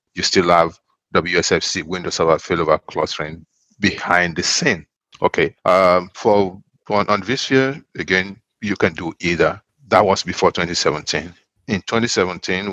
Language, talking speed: English, 135 wpm